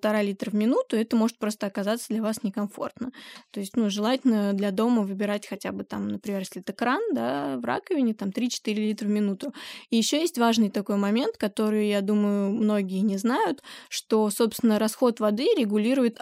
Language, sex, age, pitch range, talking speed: Russian, female, 20-39, 205-235 Hz, 180 wpm